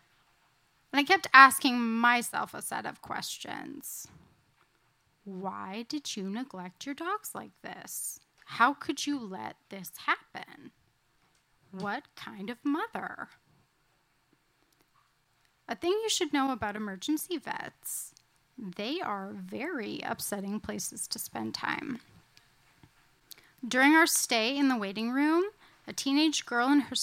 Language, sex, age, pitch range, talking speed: English, female, 10-29, 205-270 Hz, 120 wpm